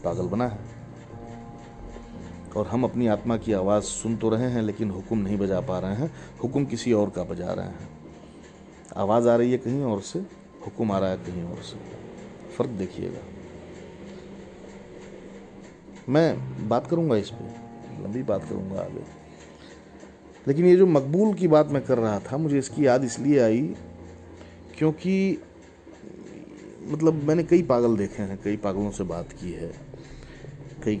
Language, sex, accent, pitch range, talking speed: Hindi, male, native, 95-120 Hz, 155 wpm